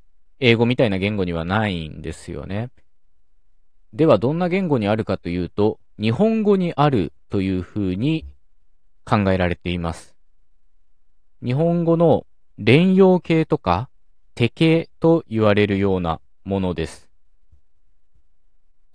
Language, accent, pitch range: Japanese, native, 90-130 Hz